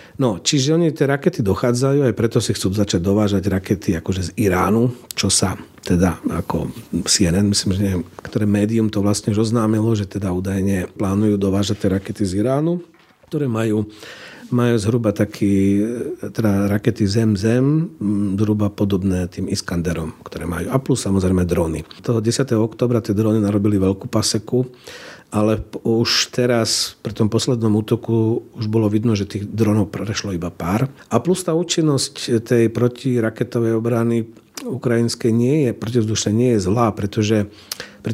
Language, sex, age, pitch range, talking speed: Slovak, male, 40-59, 105-120 Hz, 145 wpm